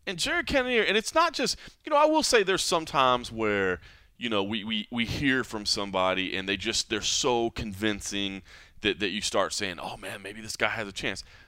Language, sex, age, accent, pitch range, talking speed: English, male, 30-49, American, 100-155 Hz, 235 wpm